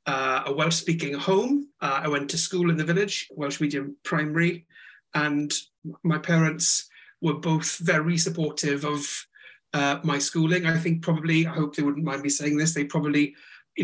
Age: 40-59